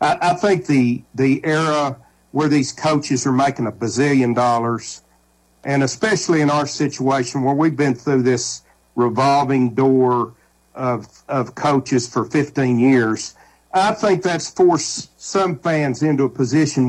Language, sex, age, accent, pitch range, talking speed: English, male, 50-69, American, 125-160 Hz, 140 wpm